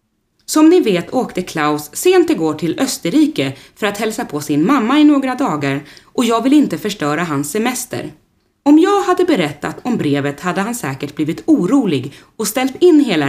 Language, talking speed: Swedish, 180 wpm